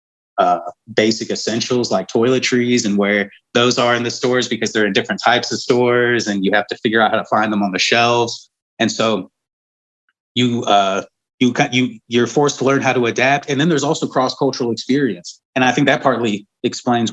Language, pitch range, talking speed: English, 105-125 Hz, 200 wpm